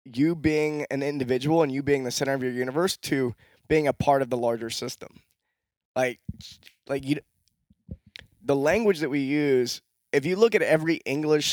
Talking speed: 175 wpm